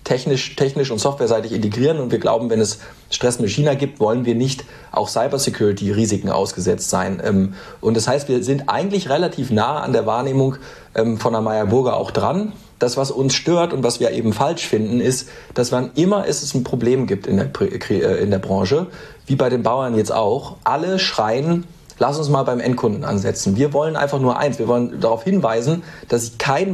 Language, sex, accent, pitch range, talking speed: German, male, German, 115-150 Hz, 195 wpm